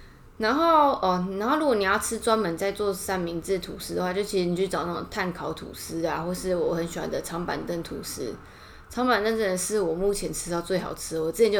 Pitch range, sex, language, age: 175-210 Hz, female, Chinese, 20-39